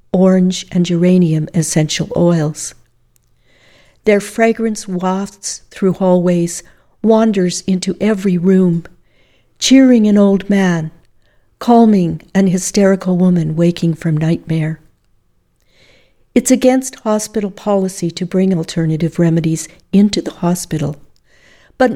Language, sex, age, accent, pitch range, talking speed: English, female, 60-79, American, 165-200 Hz, 100 wpm